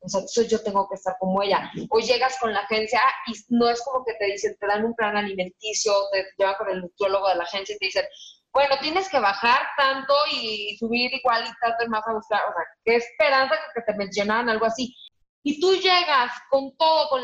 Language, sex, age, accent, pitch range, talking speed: English, female, 20-39, Mexican, 220-280 Hz, 225 wpm